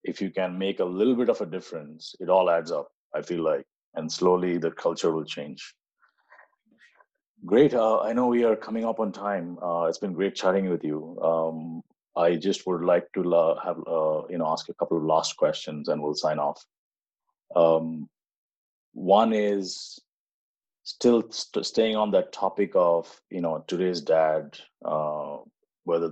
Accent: Indian